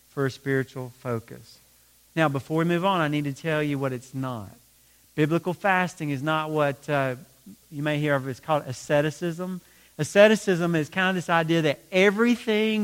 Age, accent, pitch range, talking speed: 40-59, American, 135-190 Hz, 180 wpm